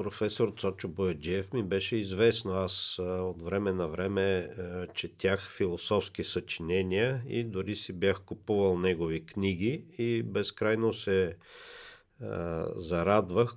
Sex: male